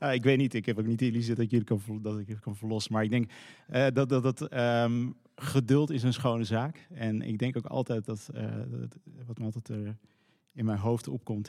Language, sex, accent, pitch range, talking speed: Dutch, male, Dutch, 105-125 Hz, 255 wpm